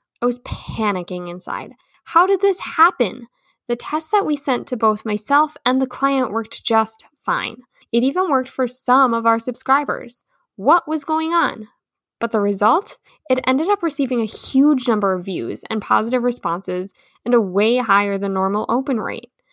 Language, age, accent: English, 10-29, American